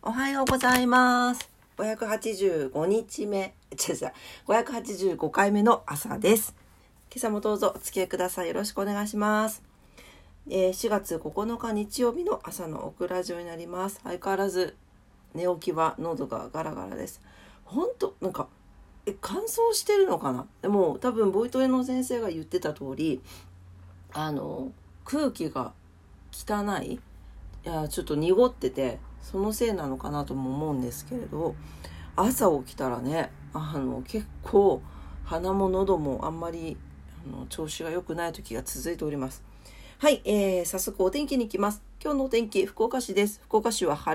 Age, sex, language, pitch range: 40-59, female, Japanese, 165-245 Hz